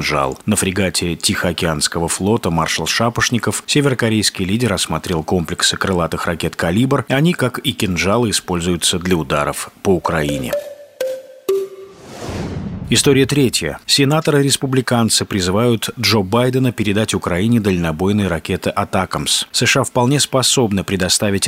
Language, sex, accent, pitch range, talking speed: Russian, male, native, 95-125 Hz, 105 wpm